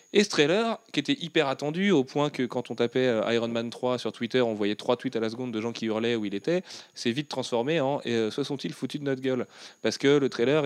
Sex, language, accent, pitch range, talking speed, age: male, French, French, 110-140 Hz, 280 wpm, 30-49